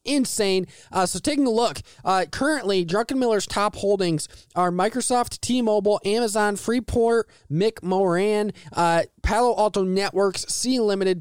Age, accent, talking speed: 20-39, American, 125 wpm